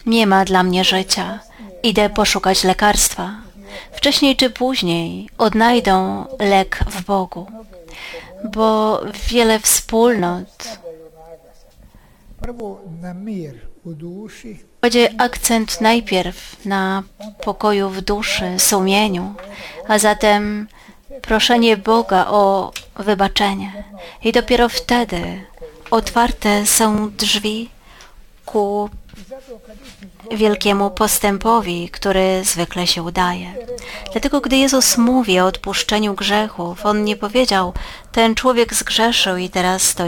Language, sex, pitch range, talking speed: Polish, female, 185-225 Hz, 90 wpm